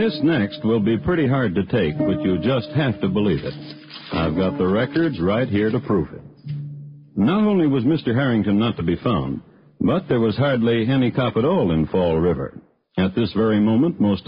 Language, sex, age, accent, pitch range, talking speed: English, male, 60-79, American, 100-130 Hz, 205 wpm